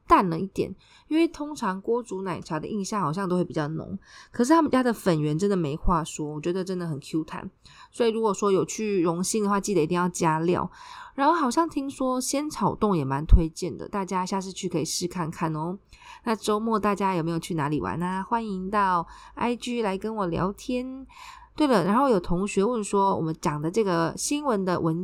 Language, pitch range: Chinese, 175-240 Hz